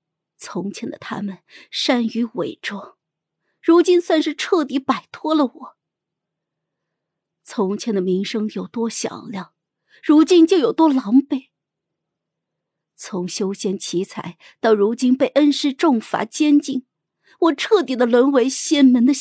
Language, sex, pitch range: Chinese, female, 205-295 Hz